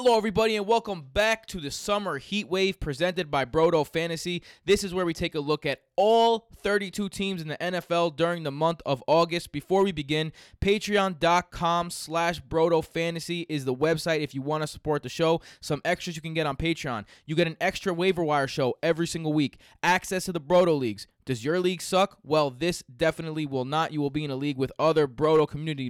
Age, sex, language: 20-39, male, English